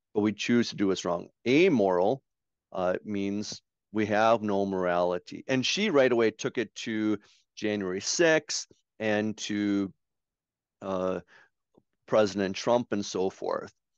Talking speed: 130 wpm